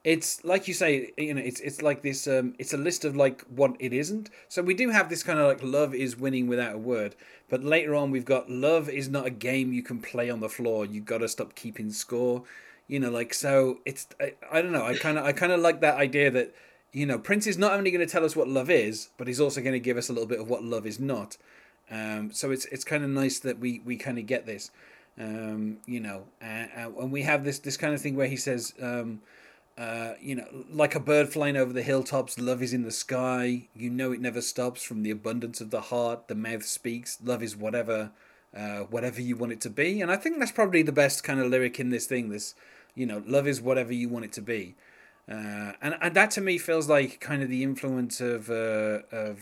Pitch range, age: 115-145 Hz, 30-49